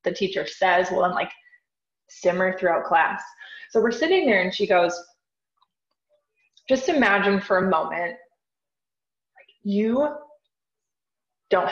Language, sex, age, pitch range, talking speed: English, female, 20-39, 180-250 Hz, 120 wpm